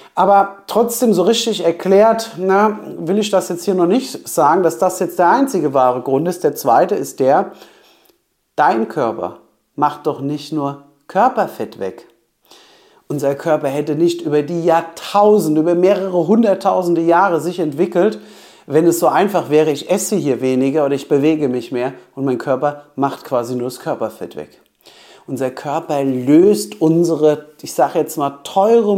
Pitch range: 145-205 Hz